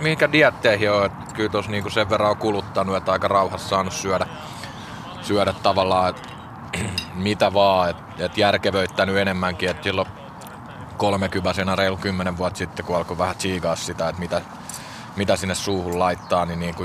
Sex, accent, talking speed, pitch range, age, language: male, native, 150 wpm, 90-100 Hz, 30-49, Finnish